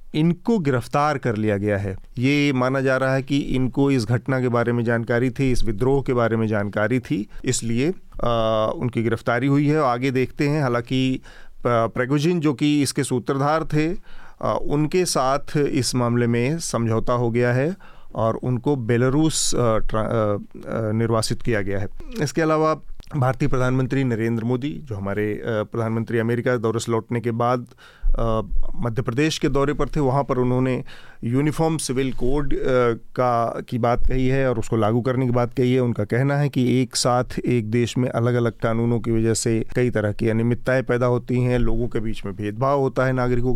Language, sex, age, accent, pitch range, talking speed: Hindi, male, 40-59, native, 120-140 Hz, 180 wpm